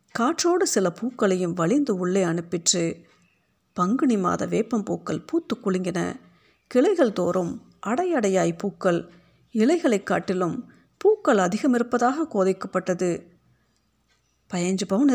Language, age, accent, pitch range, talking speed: Tamil, 50-69, native, 185-225 Hz, 95 wpm